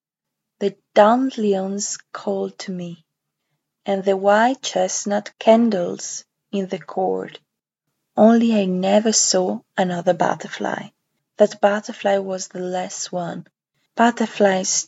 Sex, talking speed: female, 105 wpm